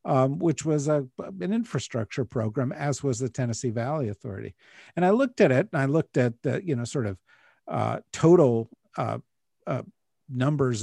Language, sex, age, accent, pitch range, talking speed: English, male, 50-69, American, 115-150 Hz, 175 wpm